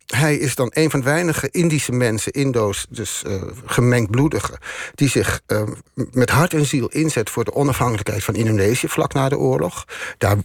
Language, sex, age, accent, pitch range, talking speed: Dutch, male, 50-69, Dutch, 110-145 Hz, 185 wpm